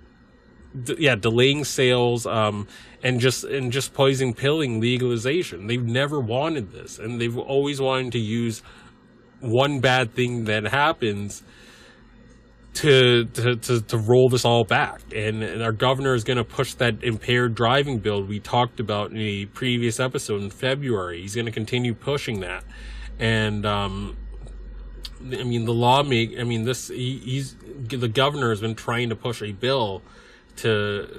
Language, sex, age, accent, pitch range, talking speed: English, male, 30-49, American, 110-125 Hz, 160 wpm